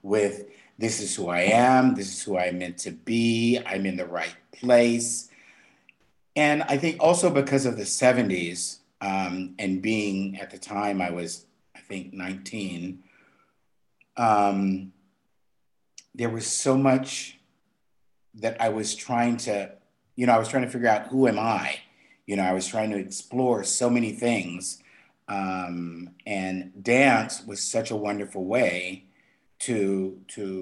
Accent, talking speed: American, 150 wpm